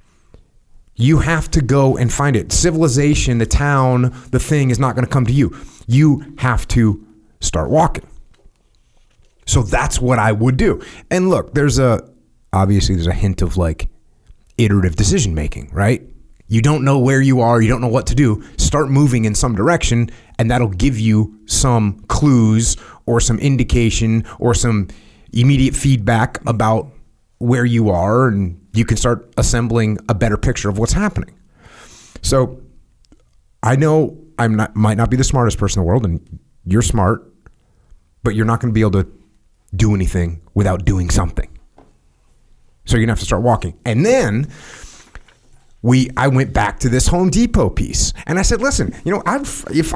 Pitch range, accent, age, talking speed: 105-135 Hz, American, 30-49, 175 wpm